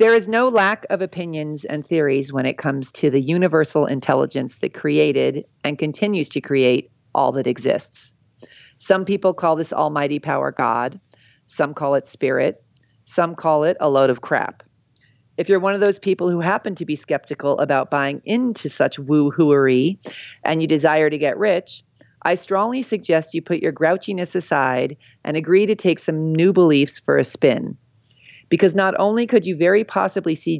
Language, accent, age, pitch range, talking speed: English, American, 40-59, 140-175 Hz, 175 wpm